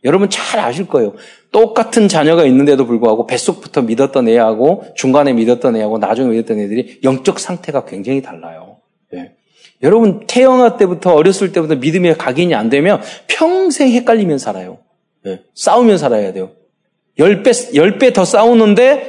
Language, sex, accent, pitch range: Korean, male, native, 130-220 Hz